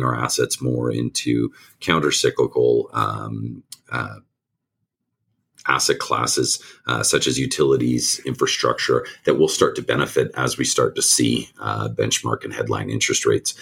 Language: English